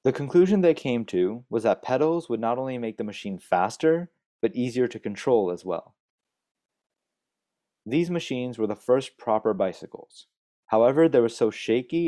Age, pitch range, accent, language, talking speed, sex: 20-39, 110-140 Hz, American, English, 165 wpm, male